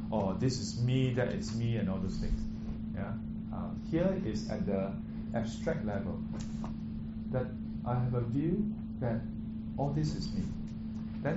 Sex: male